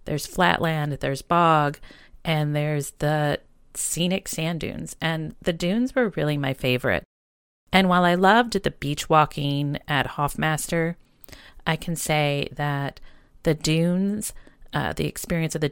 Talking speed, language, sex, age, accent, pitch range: 140 wpm, English, female, 30-49, American, 135-160 Hz